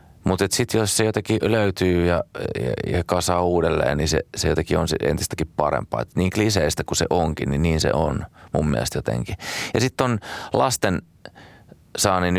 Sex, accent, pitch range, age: male, native, 75-95 Hz, 30-49